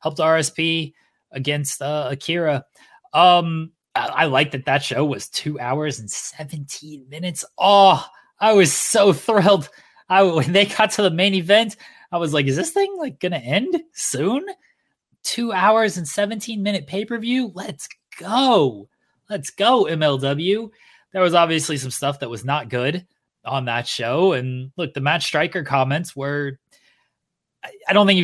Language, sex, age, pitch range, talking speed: English, male, 20-39, 130-175 Hz, 165 wpm